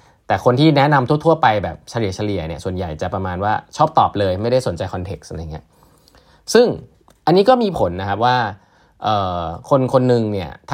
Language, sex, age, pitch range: Thai, male, 20-39, 100-135 Hz